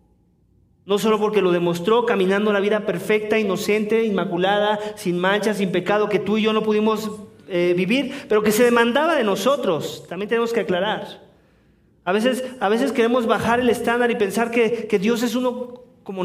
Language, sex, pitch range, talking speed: English, male, 195-250 Hz, 175 wpm